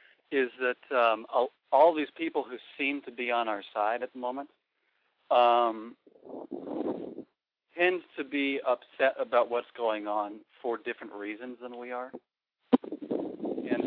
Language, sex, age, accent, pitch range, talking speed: English, male, 40-59, American, 115-145 Hz, 145 wpm